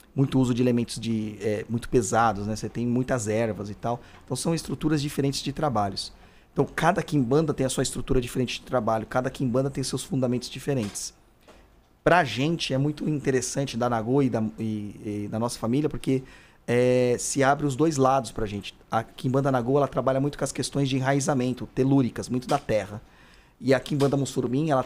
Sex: male